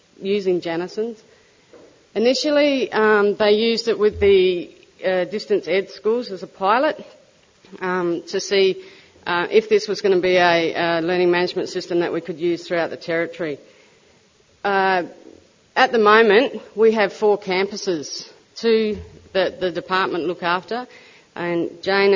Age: 30-49